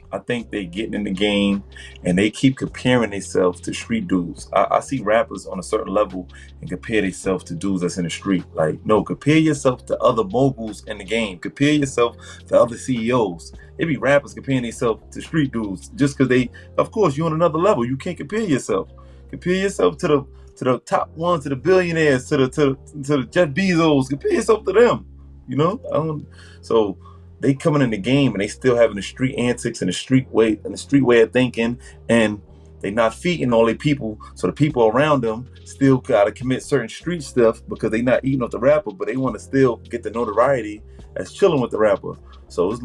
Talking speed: 220 wpm